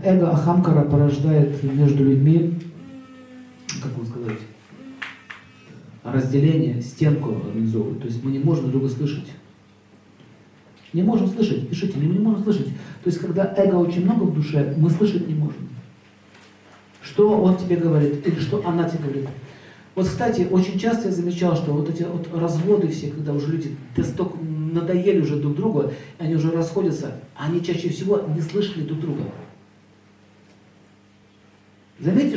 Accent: native